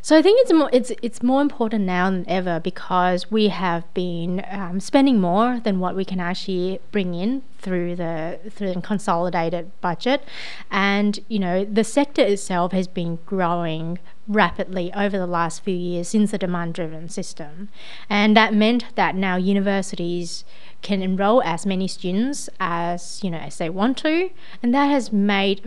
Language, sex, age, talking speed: English, female, 30-49, 175 wpm